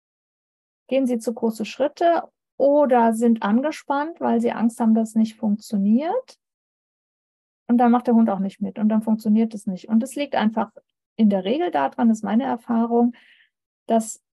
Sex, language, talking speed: female, German, 165 wpm